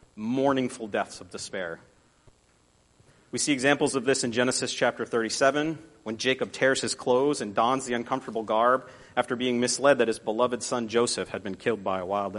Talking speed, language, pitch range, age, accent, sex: 185 wpm, English, 110-140 Hz, 40-59, American, male